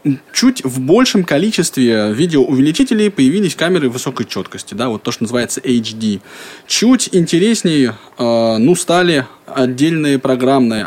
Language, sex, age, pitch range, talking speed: Russian, male, 20-39, 115-170 Hz, 120 wpm